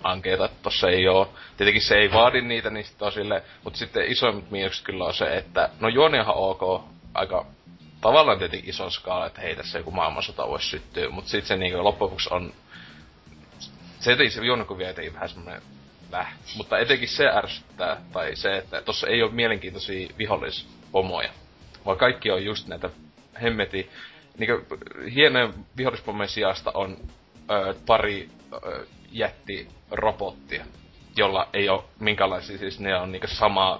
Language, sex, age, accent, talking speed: Finnish, male, 20-39, native, 145 wpm